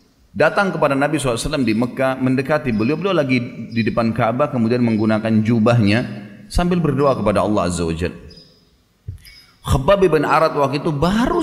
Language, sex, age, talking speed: Indonesian, male, 30-49, 160 wpm